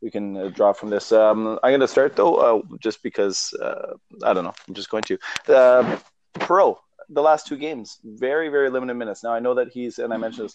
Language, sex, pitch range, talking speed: English, male, 100-125 Hz, 240 wpm